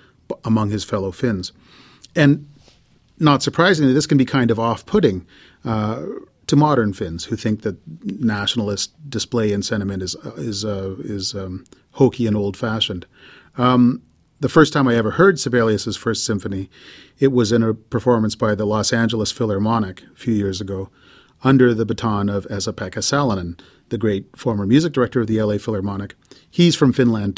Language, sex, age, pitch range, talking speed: English, male, 40-59, 105-130 Hz, 165 wpm